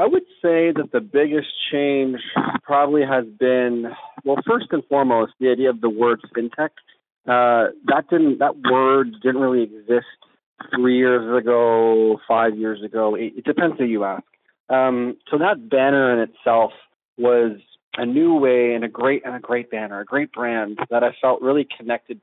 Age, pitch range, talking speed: 30-49, 110-130 Hz, 175 wpm